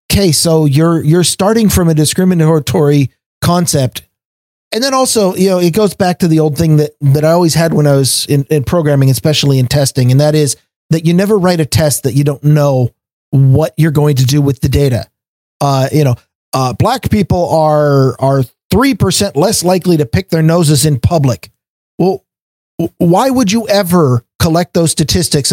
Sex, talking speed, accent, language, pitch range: male, 195 wpm, American, English, 140-190 Hz